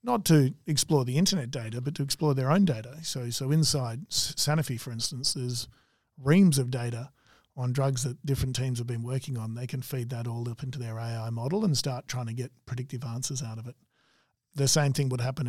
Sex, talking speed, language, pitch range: male, 215 wpm, English, 125-145 Hz